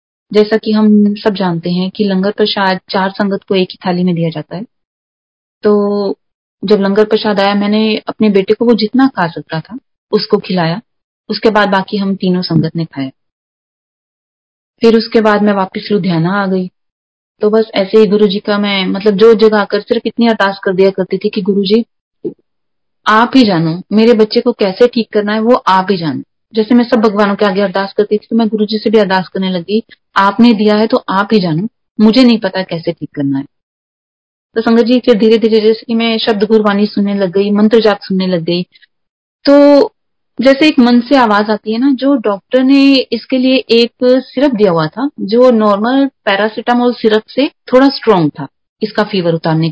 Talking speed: 200 wpm